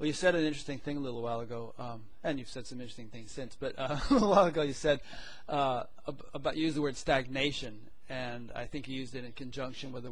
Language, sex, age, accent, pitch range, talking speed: English, male, 40-59, American, 120-140 Hz, 250 wpm